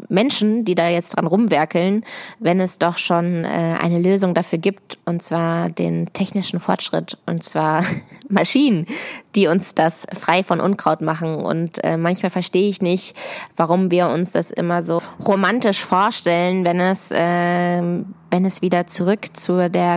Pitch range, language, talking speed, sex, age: 170-190 Hz, German, 160 wpm, female, 20-39